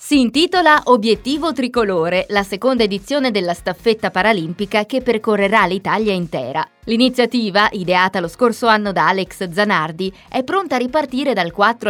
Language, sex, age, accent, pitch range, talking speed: Italian, female, 30-49, native, 180-240 Hz, 140 wpm